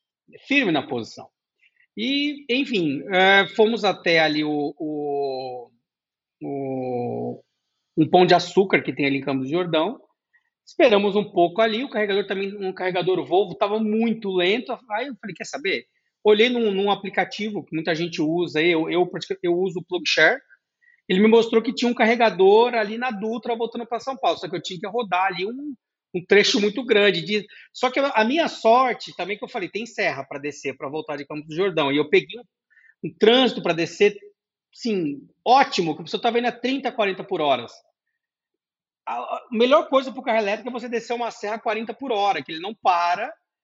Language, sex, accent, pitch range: Portuguese, male, Brazilian, 180-245 Hz